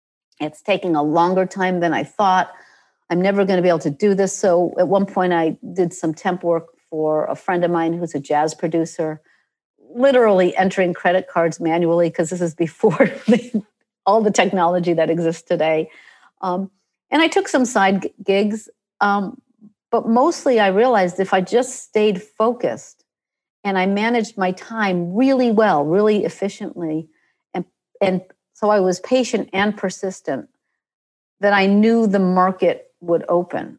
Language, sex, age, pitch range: English, female, 50-69, 175-210 Hz